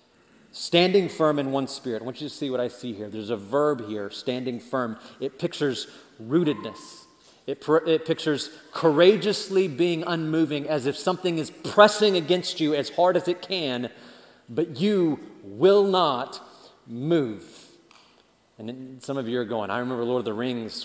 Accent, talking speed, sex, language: American, 165 wpm, male, English